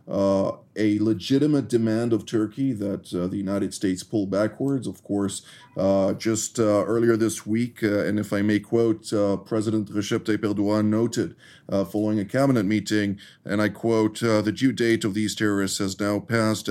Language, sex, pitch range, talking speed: English, male, 100-115 Hz, 185 wpm